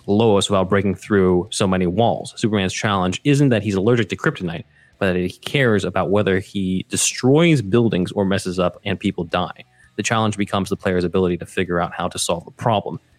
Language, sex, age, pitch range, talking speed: English, male, 30-49, 95-120 Hz, 200 wpm